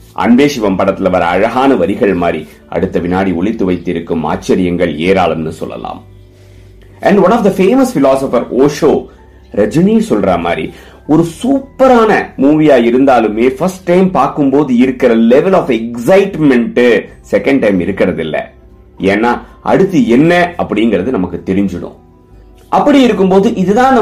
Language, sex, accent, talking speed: Tamil, male, native, 70 wpm